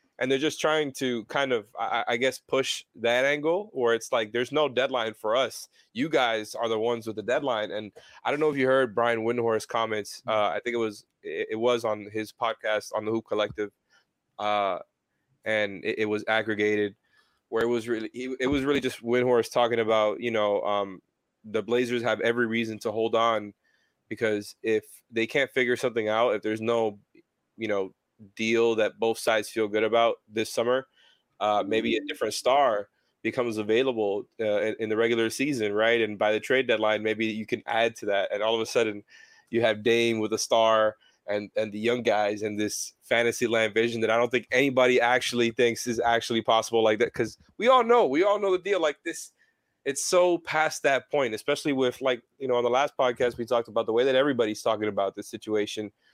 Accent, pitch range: American, 110-125 Hz